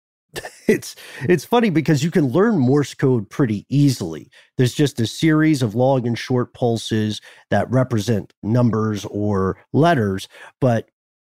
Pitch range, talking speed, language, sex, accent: 110-145 Hz, 140 wpm, English, male, American